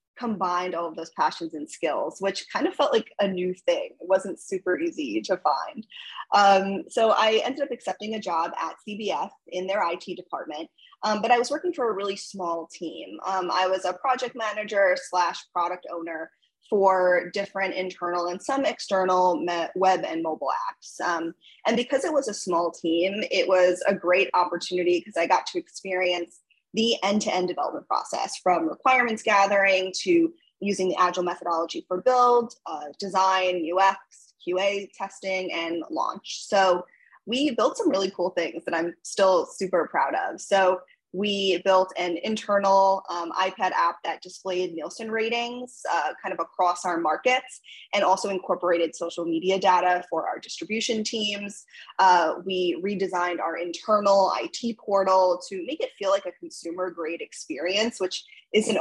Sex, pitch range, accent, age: female, 175-215 Hz, American, 20-39